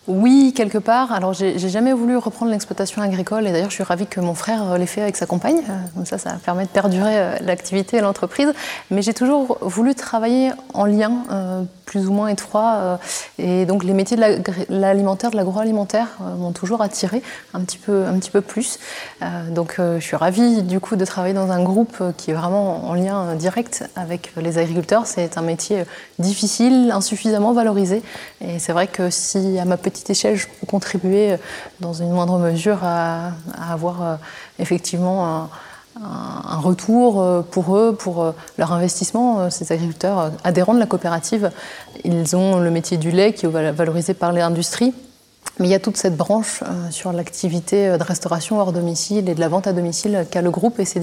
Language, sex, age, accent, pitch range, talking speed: French, female, 20-39, French, 175-210 Hz, 190 wpm